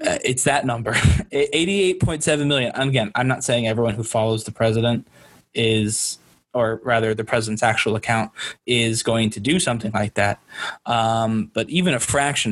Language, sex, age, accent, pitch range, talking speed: English, male, 20-39, American, 115-135 Hz, 160 wpm